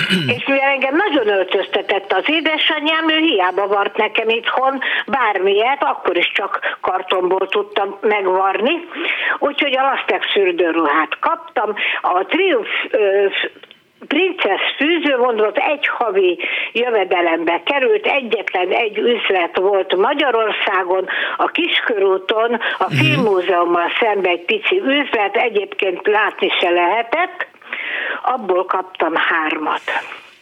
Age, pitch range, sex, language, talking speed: 60-79, 190-315 Hz, female, Hungarian, 105 wpm